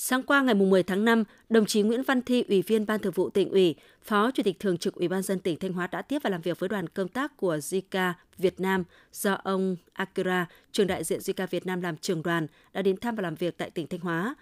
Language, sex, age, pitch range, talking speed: Vietnamese, female, 20-39, 180-215 Hz, 265 wpm